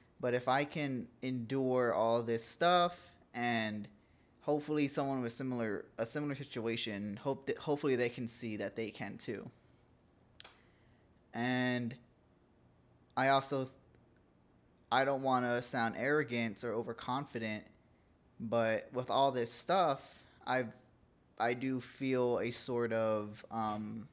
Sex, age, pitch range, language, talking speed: male, 20-39, 110-130 Hz, English, 125 wpm